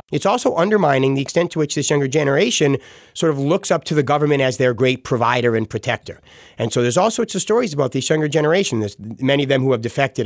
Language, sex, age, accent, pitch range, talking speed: English, male, 30-49, American, 130-170 Hz, 240 wpm